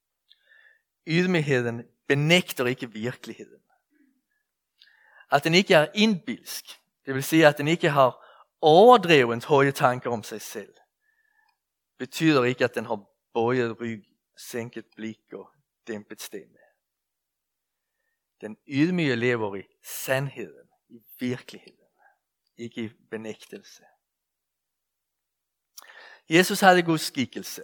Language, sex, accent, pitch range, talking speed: Danish, male, Swedish, 120-185 Hz, 105 wpm